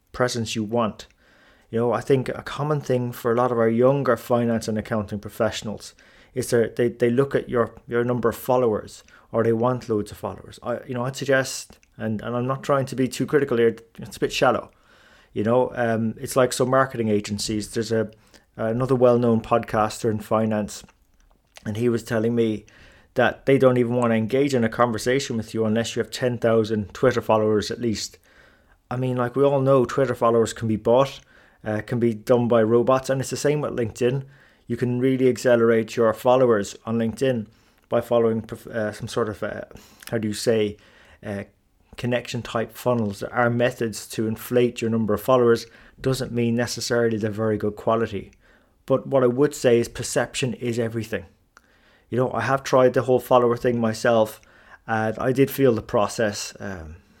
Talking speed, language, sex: 190 wpm, English, male